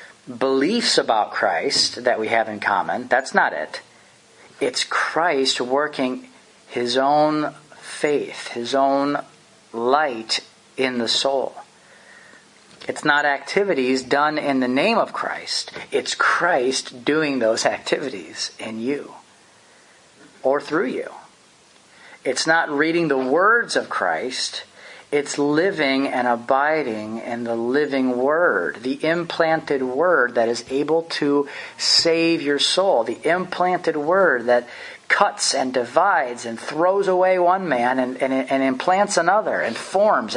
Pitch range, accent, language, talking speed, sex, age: 125-160 Hz, American, English, 125 wpm, male, 40-59